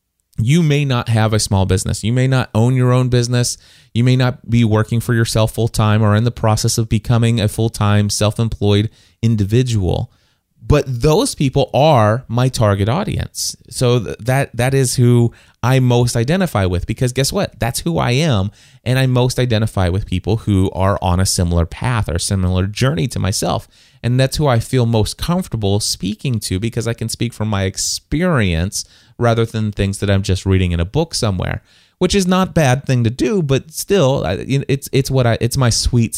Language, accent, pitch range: English, American, 100-125 Hz